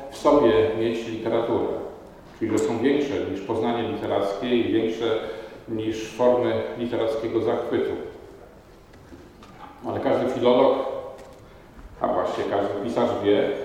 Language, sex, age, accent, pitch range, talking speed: Polish, male, 40-59, native, 110-140 Hz, 110 wpm